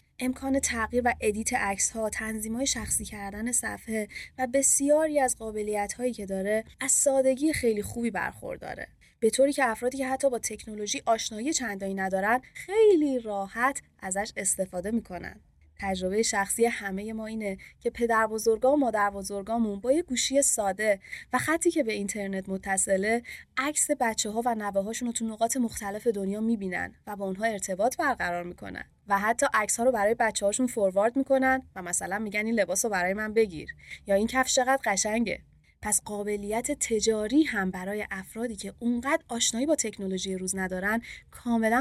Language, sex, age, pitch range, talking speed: Persian, female, 20-39, 195-245 Hz, 155 wpm